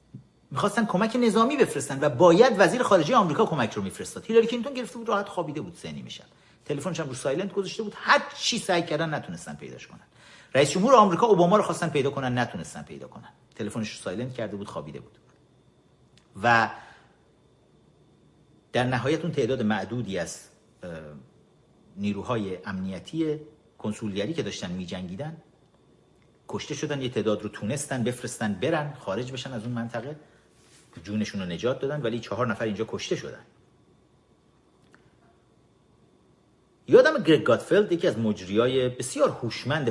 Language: Persian